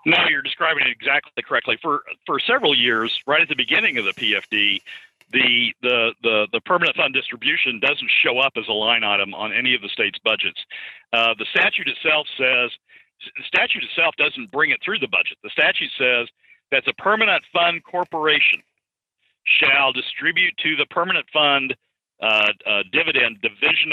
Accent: American